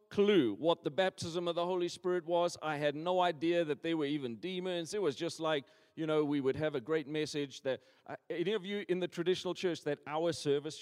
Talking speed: 235 wpm